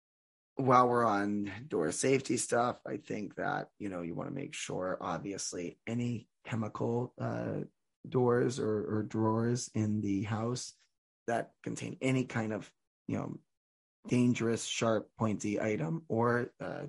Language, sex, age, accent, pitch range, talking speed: English, male, 20-39, American, 105-125 Hz, 140 wpm